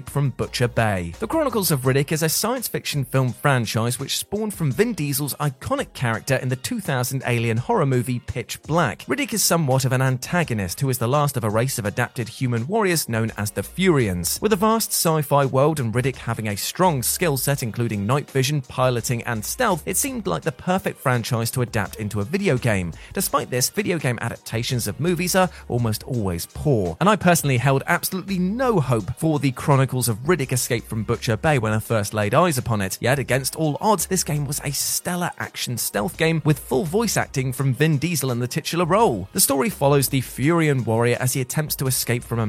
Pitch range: 120-165 Hz